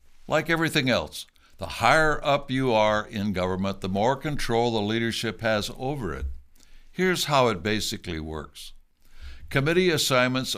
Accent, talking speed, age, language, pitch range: American, 140 wpm, 60-79, English, 95-130 Hz